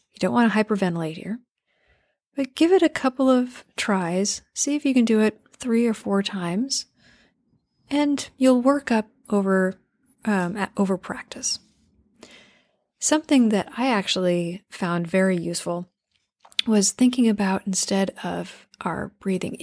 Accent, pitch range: American, 195-245 Hz